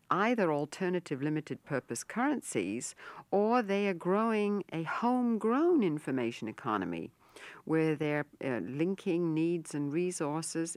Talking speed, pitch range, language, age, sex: 105 wpm, 150-200 Hz, English, 60-79, female